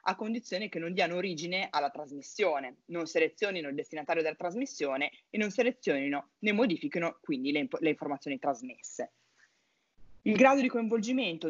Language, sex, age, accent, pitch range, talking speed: Italian, female, 20-39, native, 155-225 Hz, 145 wpm